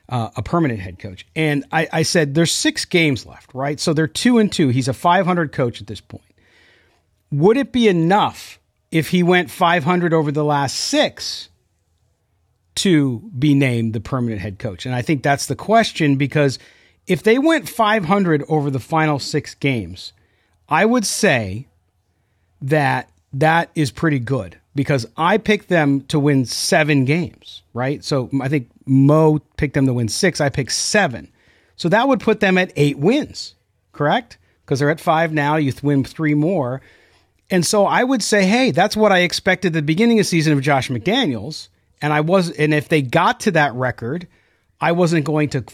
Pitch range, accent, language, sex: 125-175 Hz, American, English, male